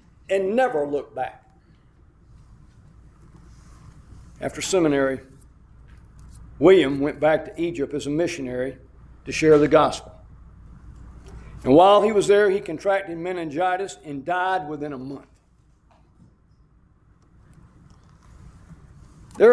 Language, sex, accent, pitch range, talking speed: English, male, American, 145-185 Hz, 100 wpm